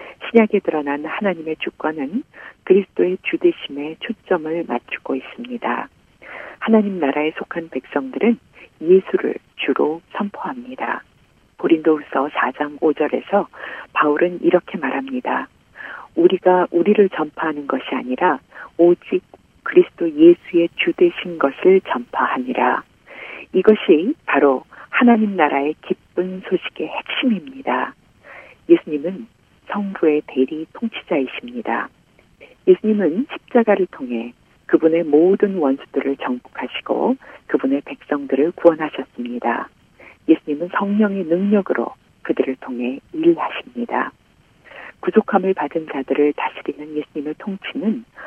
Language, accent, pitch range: Korean, native, 150-230 Hz